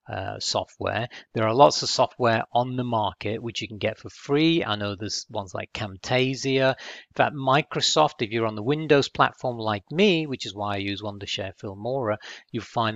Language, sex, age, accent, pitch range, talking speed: English, male, 40-59, British, 105-135 Hz, 190 wpm